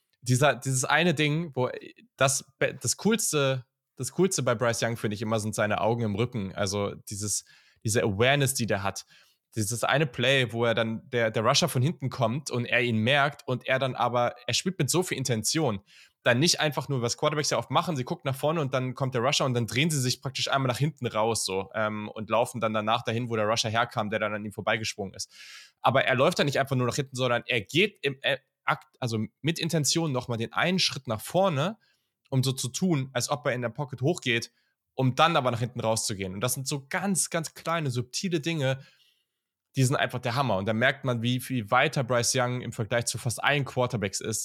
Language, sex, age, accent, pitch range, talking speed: German, male, 10-29, German, 110-140 Hz, 230 wpm